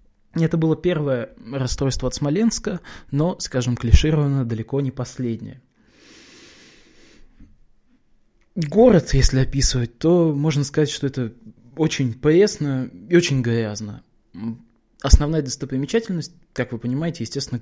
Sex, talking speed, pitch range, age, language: male, 105 wpm, 115-150 Hz, 20-39, Russian